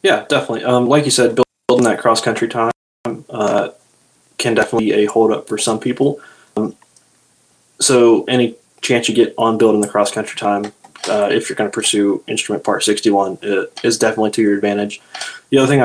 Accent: American